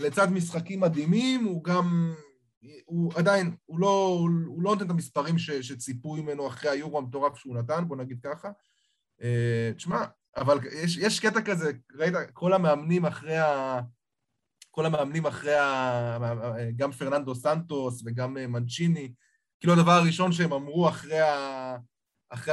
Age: 20-39